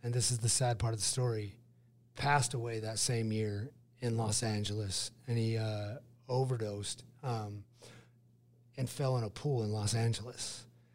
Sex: male